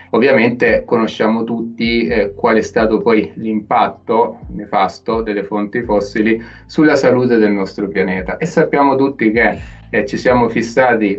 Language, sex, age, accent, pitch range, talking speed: Italian, male, 30-49, native, 105-120 Hz, 140 wpm